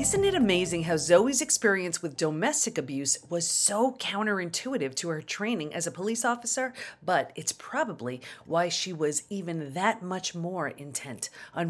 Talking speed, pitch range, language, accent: 160 wpm, 155-210 Hz, English, American